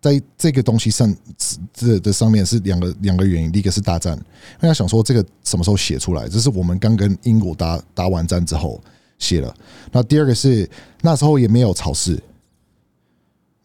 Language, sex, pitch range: Chinese, male, 90-125 Hz